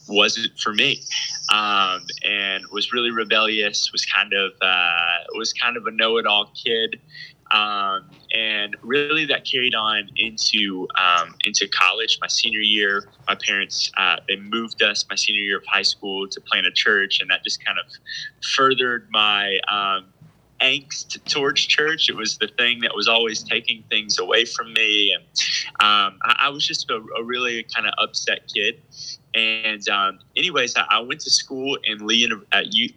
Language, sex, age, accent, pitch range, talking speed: English, male, 20-39, American, 105-135 Hz, 175 wpm